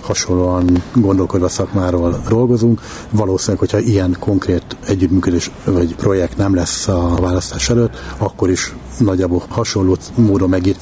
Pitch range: 90-105 Hz